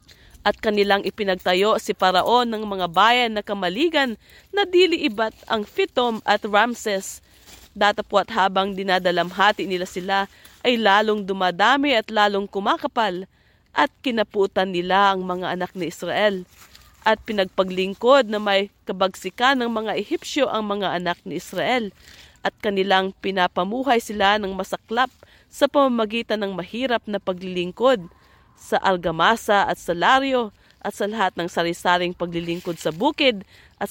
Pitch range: 185-230 Hz